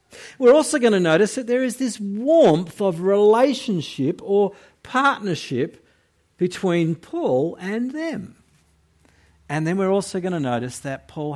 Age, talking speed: 50-69, 145 wpm